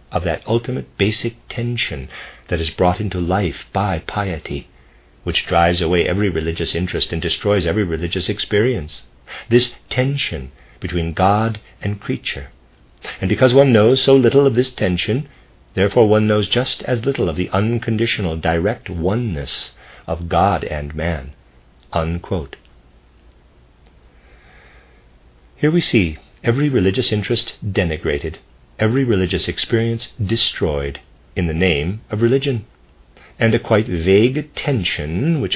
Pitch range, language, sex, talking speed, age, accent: 75-110 Hz, English, male, 125 wpm, 50-69, American